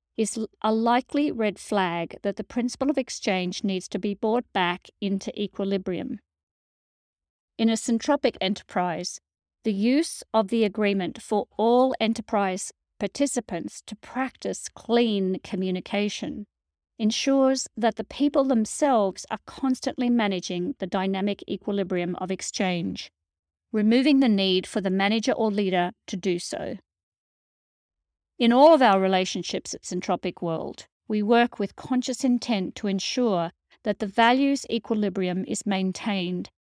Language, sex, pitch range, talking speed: English, female, 185-230 Hz, 130 wpm